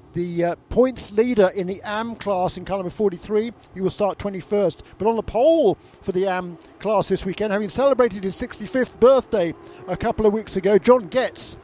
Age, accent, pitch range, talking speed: 50-69, British, 190-225 Hz, 190 wpm